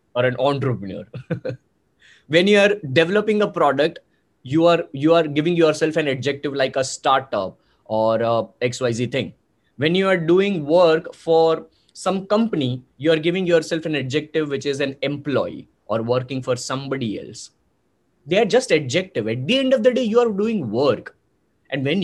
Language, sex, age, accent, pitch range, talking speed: English, male, 20-39, Indian, 145-210 Hz, 170 wpm